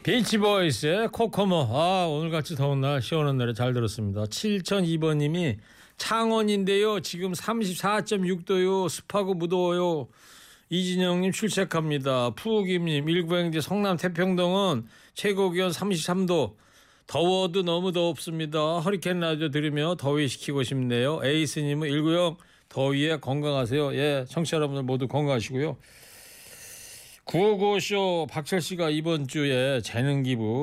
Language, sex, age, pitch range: Korean, male, 40-59, 130-180 Hz